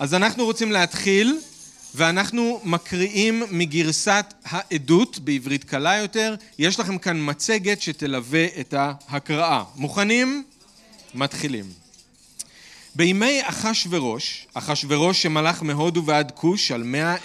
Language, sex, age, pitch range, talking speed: Hebrew, male, 40-59, 145-195 Hz, 100 wpm